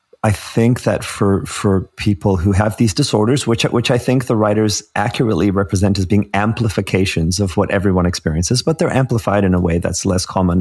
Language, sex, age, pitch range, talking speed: English, male, 30-49, 90-110 Hz, 190 wpm